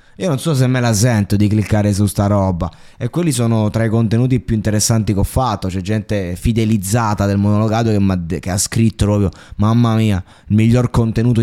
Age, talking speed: 20-39, 210 wpm